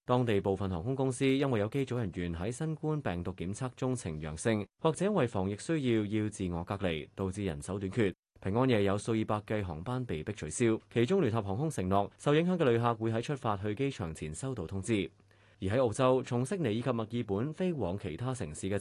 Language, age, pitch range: Chinese, 20-39, 95-130 Hz